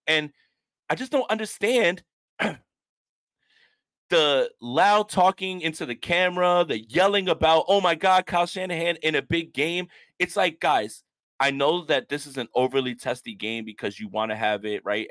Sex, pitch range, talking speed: male, 120-165 Hz, 165 wpm